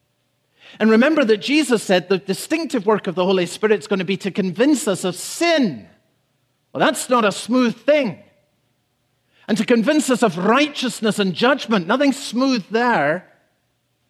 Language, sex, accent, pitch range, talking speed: English, male, British, 155-235 Hz, 160 wpm